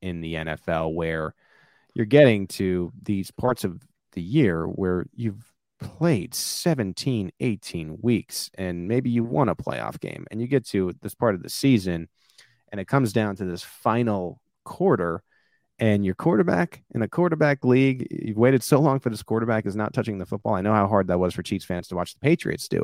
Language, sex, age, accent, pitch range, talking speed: English, male, 30-49, American, 90-115 Hz, 195 wpm